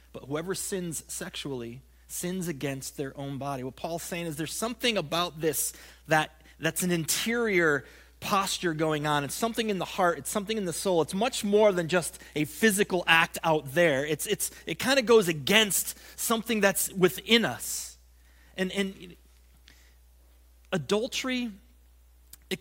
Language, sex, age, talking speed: English, male, 30-49, 160 wpm